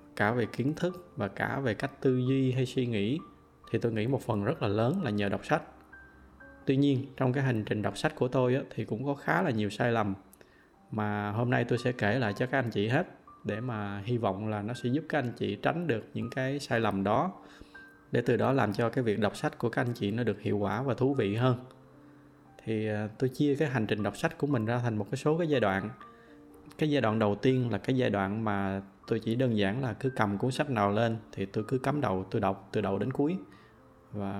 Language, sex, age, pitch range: Vietnamese, male, 20-39, 105-135 Hz